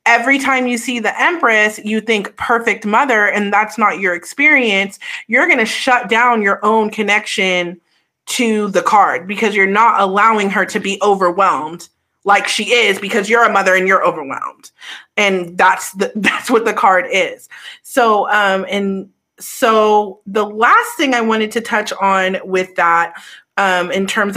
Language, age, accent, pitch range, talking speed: English, 30-49, American, 185-225 Hz, 170 wpm